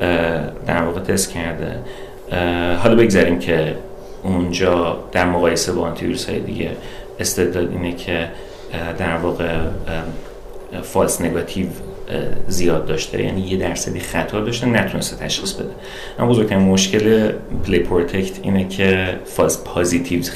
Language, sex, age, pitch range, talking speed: Persian, male, 30-49, 85-95 Hz, 115 wpm